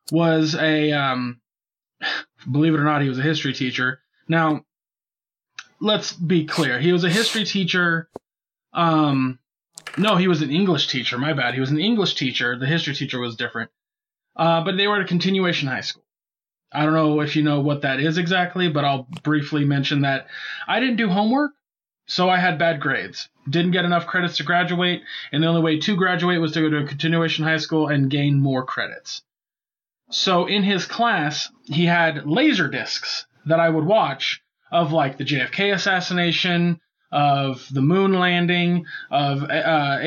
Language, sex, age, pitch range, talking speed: English, male, 20-39, 145-180 Hz, 180 wpm